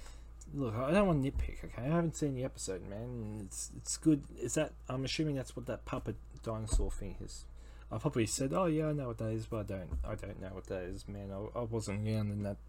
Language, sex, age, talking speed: English, male, 20-39, 245 wpm